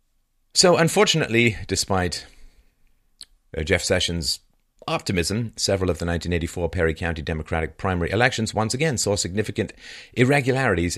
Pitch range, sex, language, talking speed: 85-115 Hz, male, English, 110 wpm